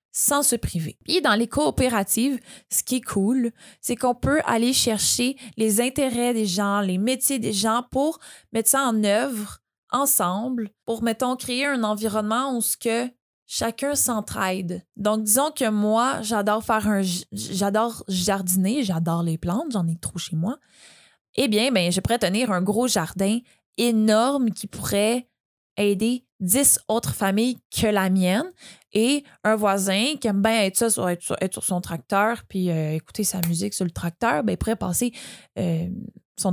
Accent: Canadian